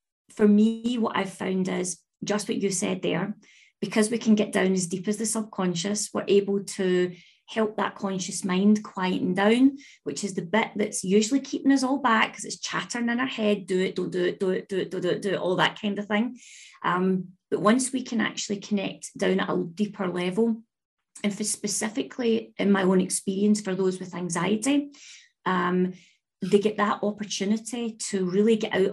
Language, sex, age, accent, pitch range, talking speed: English, female, 30-49, British, 185-215 Hz, 195 wpm